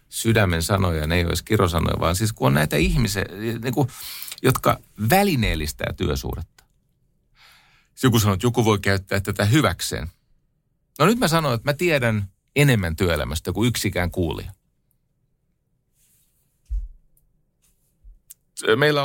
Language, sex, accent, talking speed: Finnish, male, native, 120 wpm